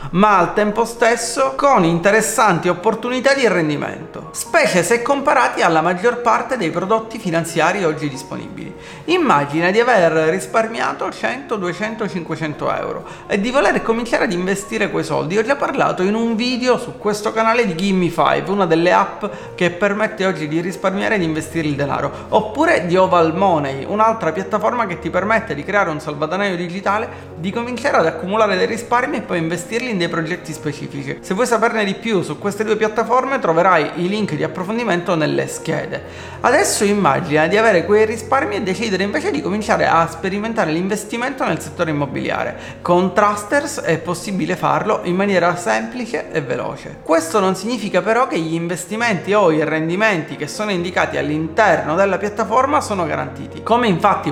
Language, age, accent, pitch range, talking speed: Italian, 30-49, native, 170-225 Hz, 165 wpm